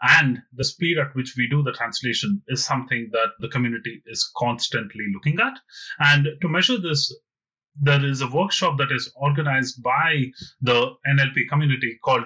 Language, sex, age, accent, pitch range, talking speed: English, male, 30-49, Indian, 130-160 Hz, 165 wpm